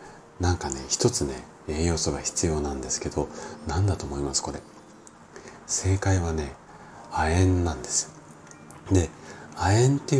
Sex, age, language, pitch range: male, 40-59, Japanese, 80-120 Hz